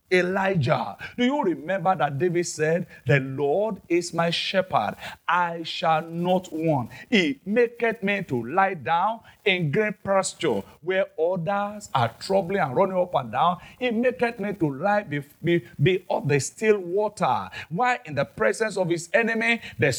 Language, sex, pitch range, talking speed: English, male, 150-205 Hz, 160 wpm